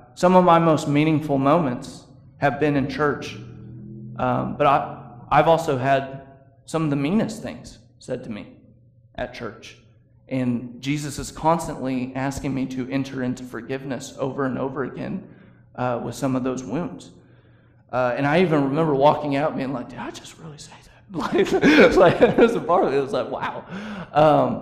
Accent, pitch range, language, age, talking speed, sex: American, 125-165 Hz, English, 30-49, 165 wpm, male